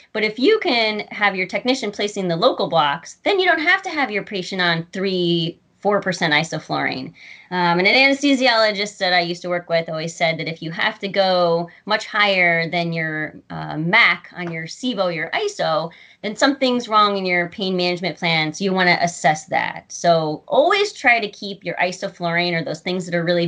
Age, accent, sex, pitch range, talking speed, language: 30-49, American, female, 170-215 Hz, 200 wpm, English